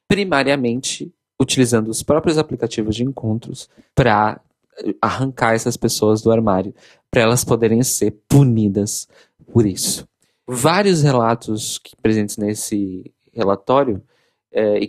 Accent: Brazilian